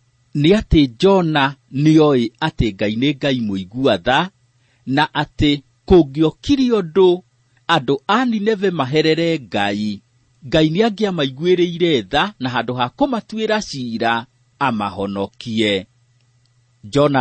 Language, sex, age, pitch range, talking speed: English, male, 40-59, 120-180 Hz, 110 wpm